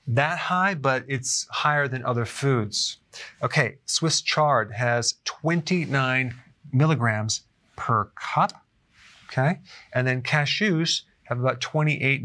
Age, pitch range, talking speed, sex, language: 30-49, 120-145 Hz, 115 wpm, male, English